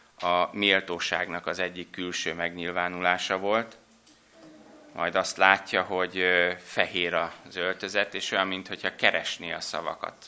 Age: 30-49